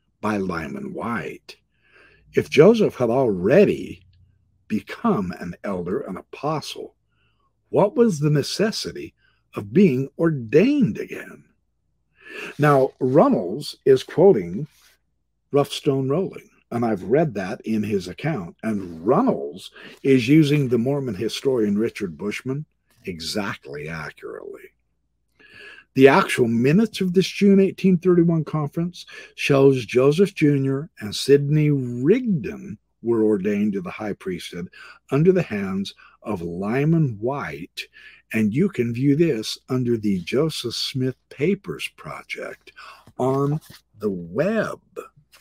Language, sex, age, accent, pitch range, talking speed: English, male, 60-79, American, 120-190 Hz, 110 wpm